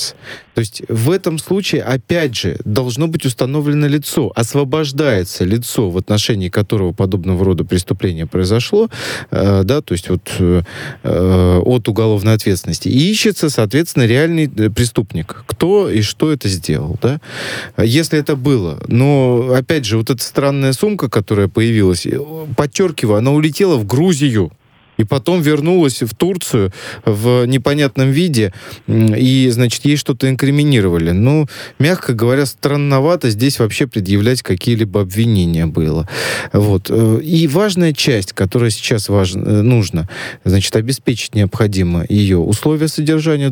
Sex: male